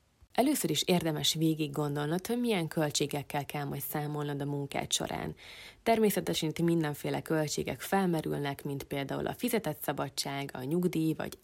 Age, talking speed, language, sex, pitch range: 20-39, 140 wpm, Hungarian, female, 145-175 Hz